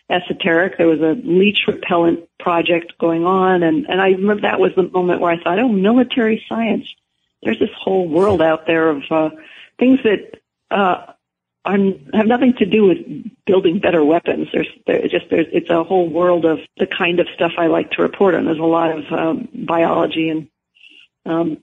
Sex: female